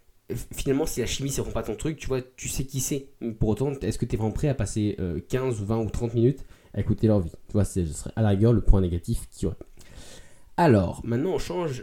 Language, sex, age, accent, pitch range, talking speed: French, male, 20-39, French, 100-120 Hz, 265 wpm